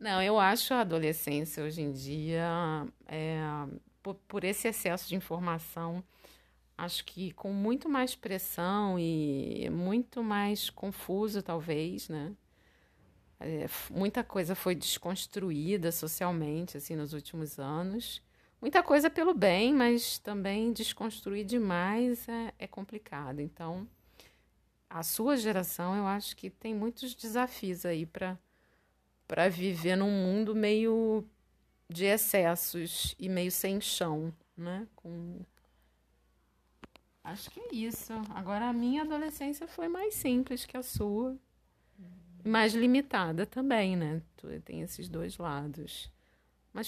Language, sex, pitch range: Portuguese, female, 160-220 Hz